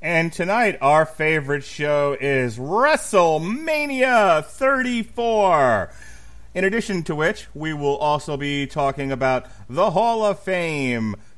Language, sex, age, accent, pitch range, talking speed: English, male, 30-49, American, 130-180 Hz, 115 wpm